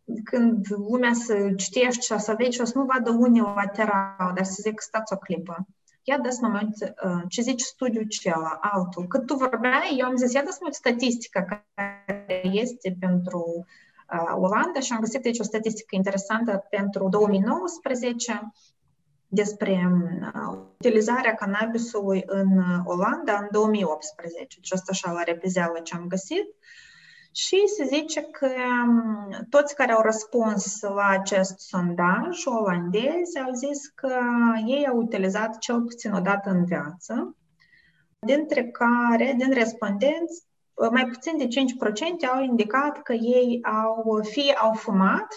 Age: 20-39